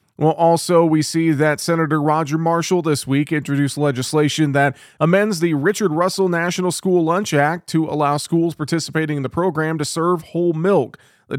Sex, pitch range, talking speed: male, 130-155 Hz, 175 wpm